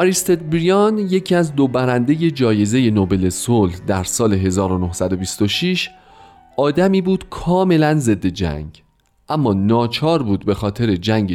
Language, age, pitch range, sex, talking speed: Persian, 40-59, 95-150 Hz, male, 120 wpm